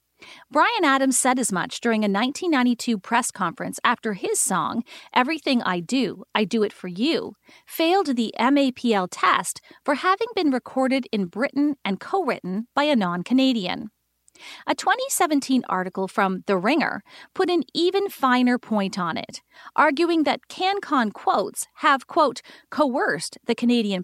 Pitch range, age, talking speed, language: 230-315 Hz, 40-59, 145 wpm, English